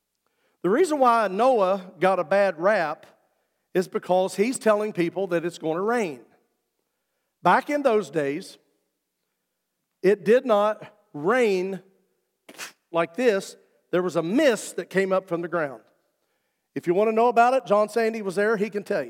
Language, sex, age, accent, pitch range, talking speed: English, male, 50-69, American, 200-320 Hz, 165 wpm